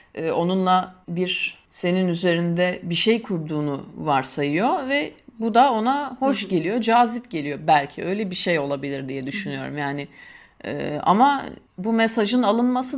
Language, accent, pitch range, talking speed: Turkish, native, 165-210 Hz, 130 wpm